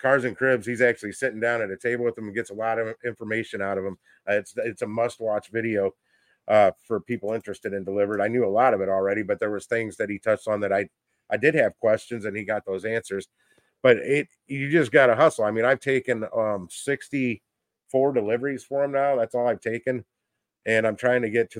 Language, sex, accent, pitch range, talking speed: English, male, American, 105-120 Hz, 240 wpm